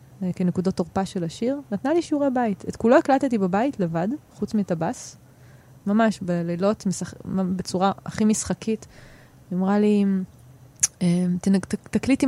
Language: Hebrew